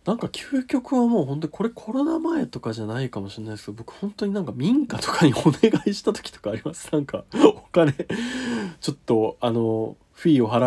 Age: 20-39